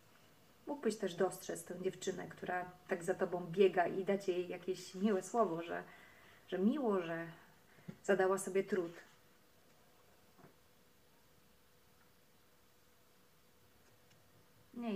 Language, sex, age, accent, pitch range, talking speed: Polish, female, 30-49, native, 185-210 Hz, 95 wpm